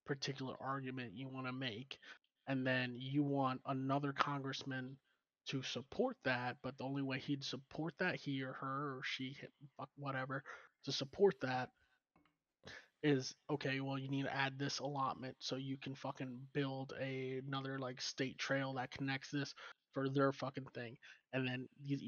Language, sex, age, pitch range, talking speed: English, male, 20-39, 130-140 Hz, 165 wpm